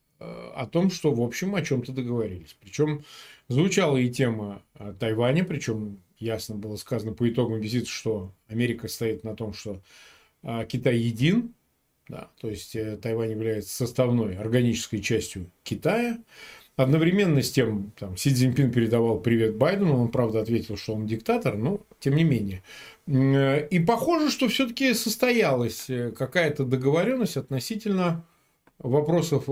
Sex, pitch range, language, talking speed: male, 115-165 Hz, Russian, 130 wpm